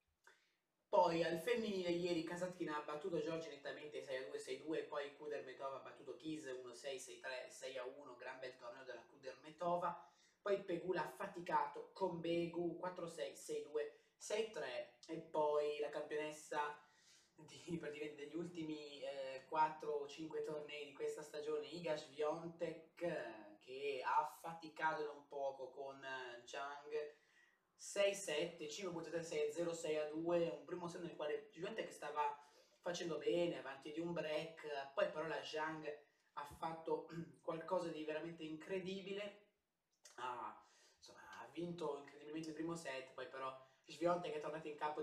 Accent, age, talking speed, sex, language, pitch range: native, 20-39, 130 wpm, male, Italian, 150-175 Hz